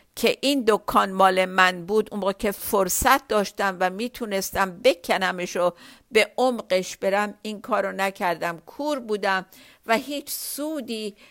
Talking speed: 125 wpm